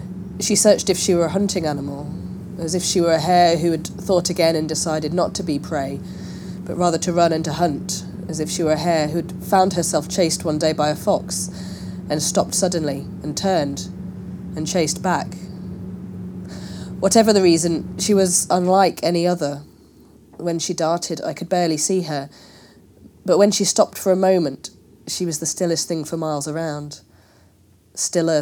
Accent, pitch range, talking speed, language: British, 135-175 Hz, 185 wpm, English